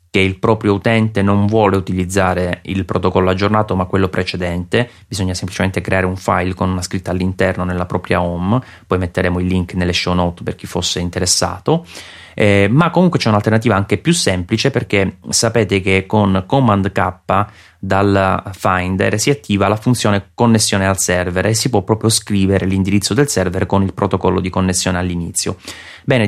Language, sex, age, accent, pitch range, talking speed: Italian, male, 30-49, native, 90-105 Hz, 170 wpm